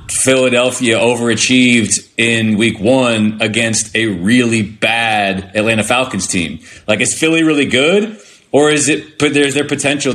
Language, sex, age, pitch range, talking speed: English, male, 30-49, 100-125 Hz, 140 wpm